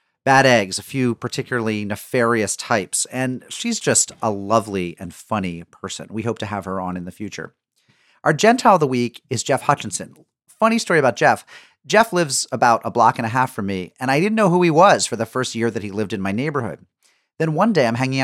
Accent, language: American, English